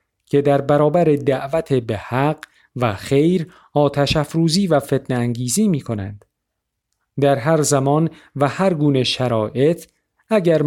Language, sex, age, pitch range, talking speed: Persian, male, 40-59, 120-160 Hz, 120 wpm